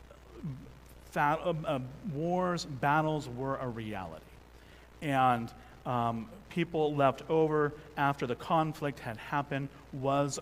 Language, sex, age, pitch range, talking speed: English, male, 40-59, 115-145 Hz, 90 wpm